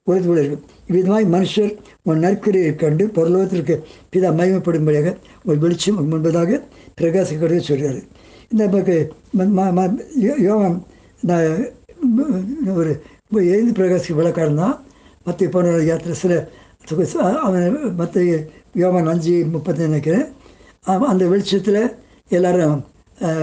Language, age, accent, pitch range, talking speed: Tamil, 60-79, native, 160-200 Hz, 90 wpm